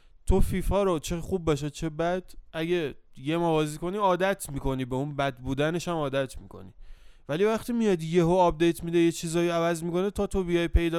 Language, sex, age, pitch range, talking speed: Persian, male, 20-39, 135-180 Hz, 195 wpm